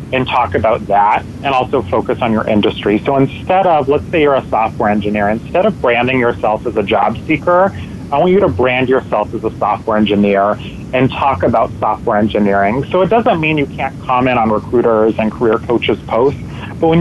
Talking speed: 200 wpm